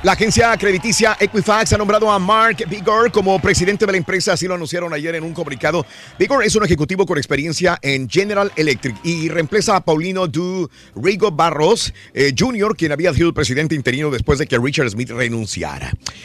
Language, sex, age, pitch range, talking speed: Spanish, male, 50-69, 150-210 Hz, 190 wpm